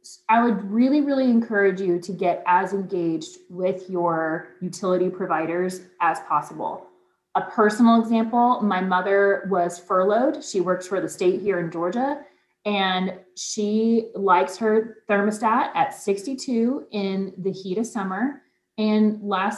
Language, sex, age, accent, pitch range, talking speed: English, female, 30-49, American, 185-225 Hz, 140 wpm